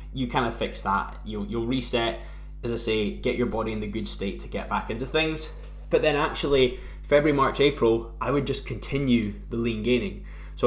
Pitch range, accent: 110-130 Hz, British